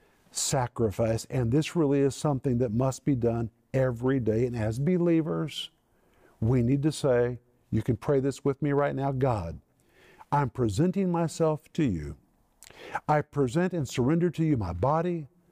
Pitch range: 125-160 Hz